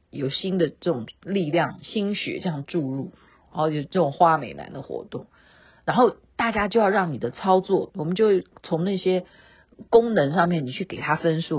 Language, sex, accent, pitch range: Chinese, female, native, 150-195 Hz